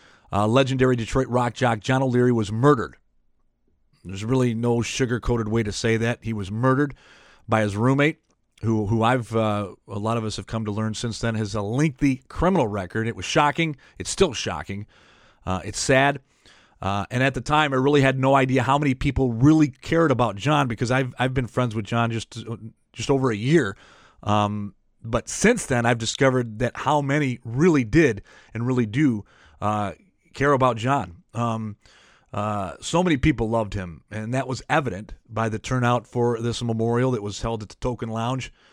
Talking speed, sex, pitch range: 190 wpm, male, 110-135 Hz